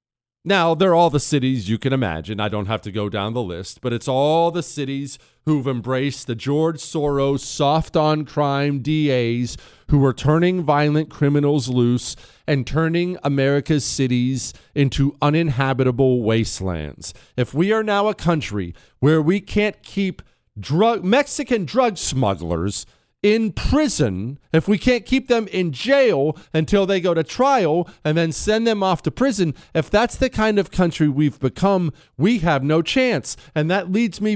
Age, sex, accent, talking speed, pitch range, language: 40-59, male, American, 165 wpm, 135-200 Hz, English